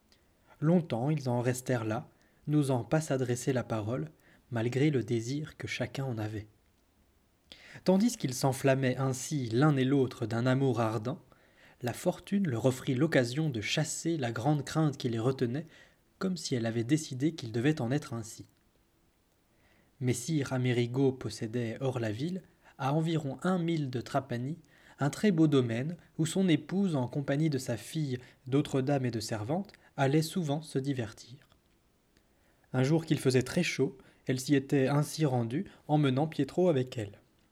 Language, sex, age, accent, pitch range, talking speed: French, male, 20-39, French, 120-155 Hz, 155 wpm